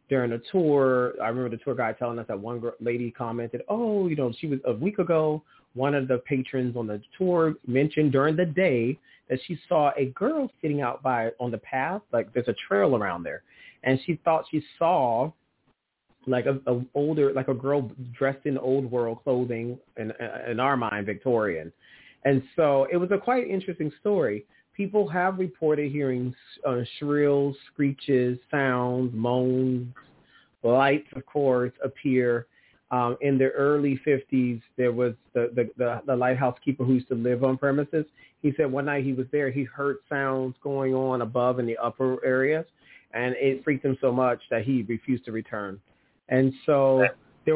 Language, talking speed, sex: English, 180 wpm, male